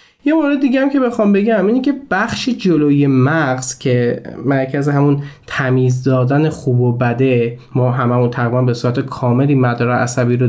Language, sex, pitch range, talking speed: Persian, male, 130-185 Hz, 170 wpm